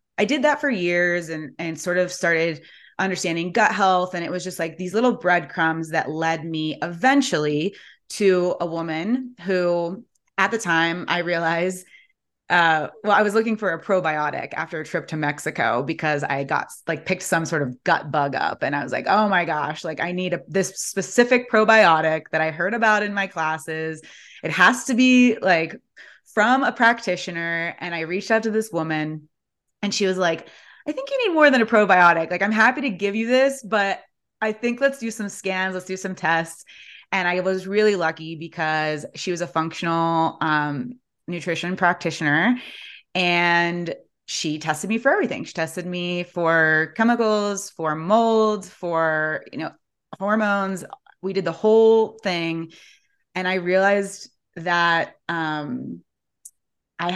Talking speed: 175 wpm